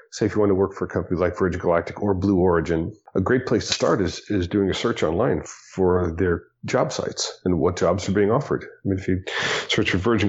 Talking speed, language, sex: 250 wpm, English, male